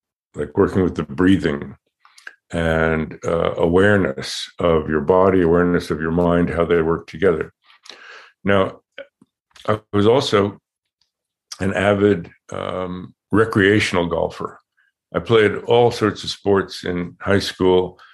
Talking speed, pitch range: 120 wpm, 85-105 Hz